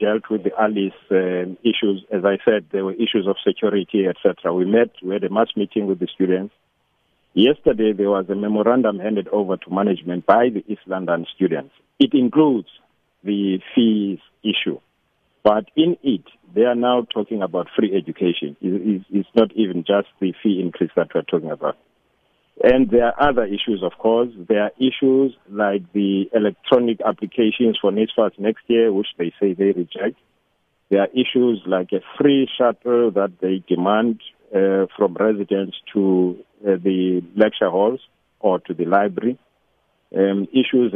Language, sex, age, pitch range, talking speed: English, male, 50-69, 95-115 Hz, 165 wpm